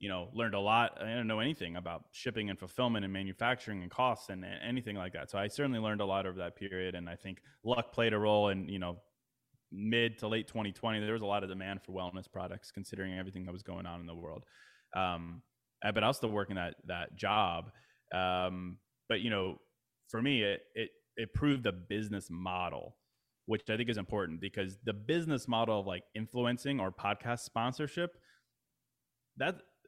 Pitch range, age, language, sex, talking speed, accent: 95-115 Hz, 20-39, English, male, 200 wpm, American